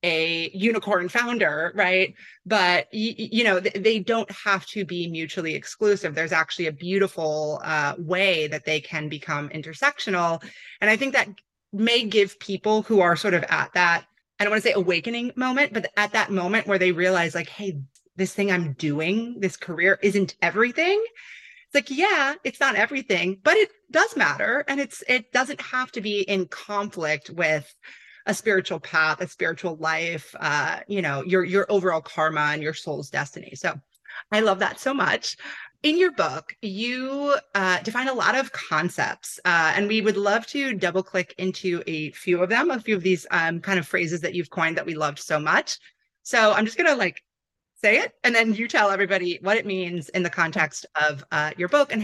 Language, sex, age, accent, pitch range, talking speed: English, female, 30-49, American, 170-220 Hz, 195 wpm